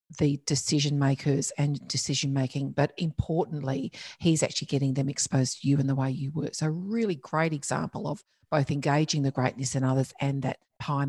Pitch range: 135-160 Hz